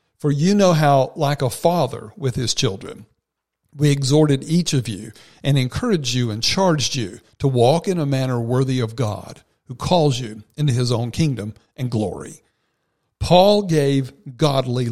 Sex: male